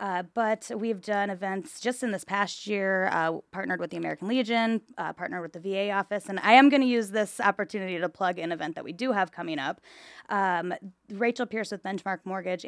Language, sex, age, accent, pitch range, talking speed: English, female, 20-39, American, 175-210 Hz, 220 wpm